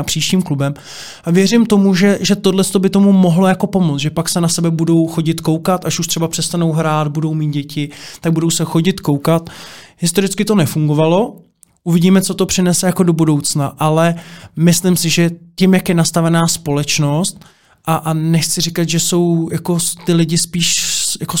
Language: Czech